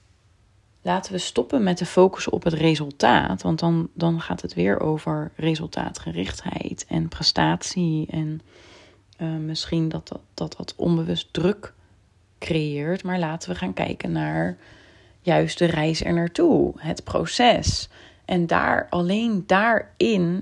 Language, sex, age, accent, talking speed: Dutch, female, 30-49, Dutch, 130 wpm